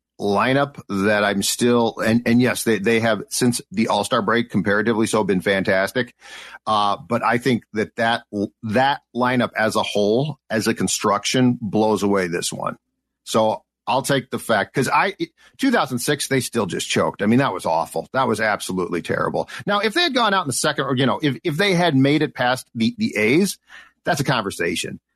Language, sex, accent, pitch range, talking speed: English, male, American, 110-135 Hz, 195 wpm